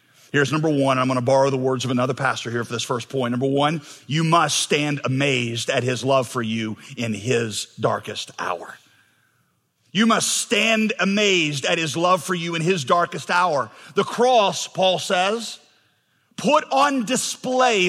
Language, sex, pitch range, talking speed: English, male, 155-235 Hz, 170 wpm